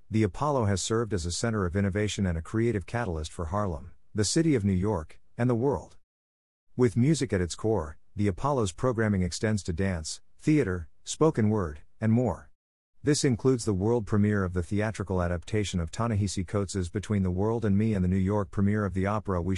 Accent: American